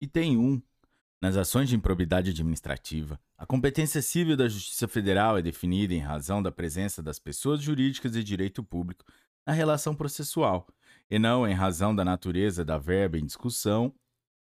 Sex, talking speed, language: male, 160 wpm, Portuguese